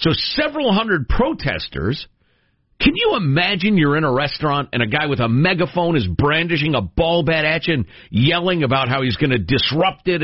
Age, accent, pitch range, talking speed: 50-69, American, 120-200 Hz, 195 wpm